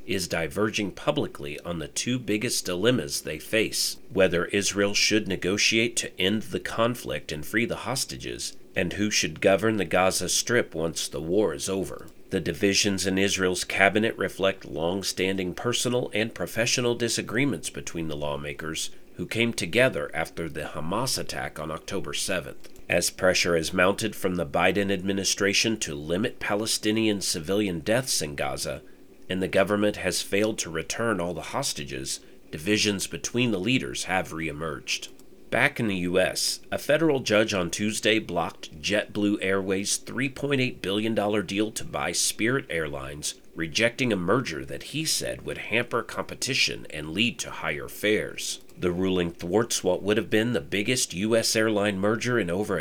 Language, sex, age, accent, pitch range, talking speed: English, male, 40-59, American, 90-110 Hz, 155 wpm